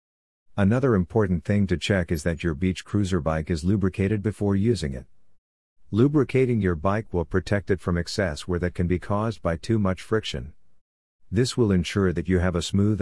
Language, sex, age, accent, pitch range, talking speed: English, male, 50-69, American, 85-100 Hz, 190 wpm